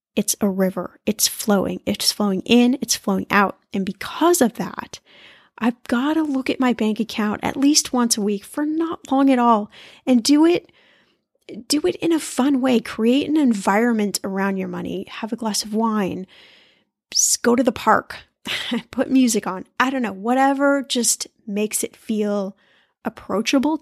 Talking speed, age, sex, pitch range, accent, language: 175 wpm, 10-29, female, 215-275 Hz, American, English